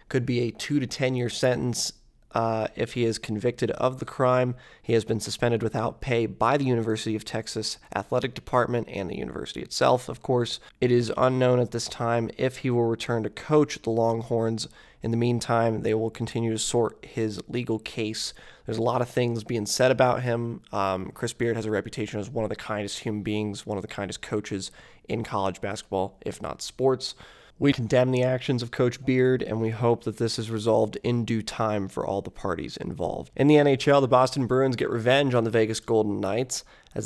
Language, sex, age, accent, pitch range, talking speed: English, male, 20-39, American, 110-130 Hz, 205 wpm